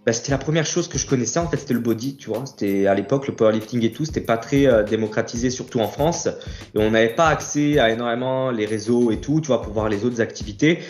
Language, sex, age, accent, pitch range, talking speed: French, male, 20-39, French, 100-125 Hz, 270 wpm